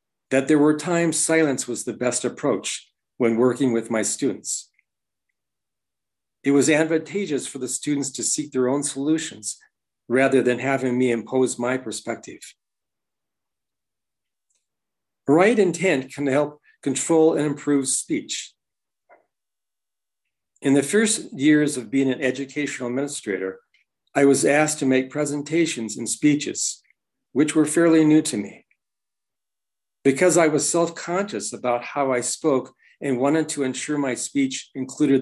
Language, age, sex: English, 50-69, male